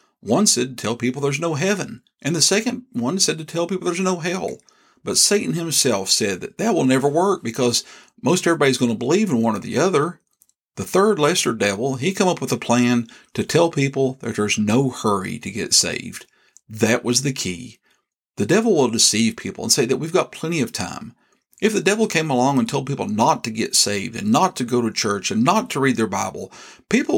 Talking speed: 225 wpm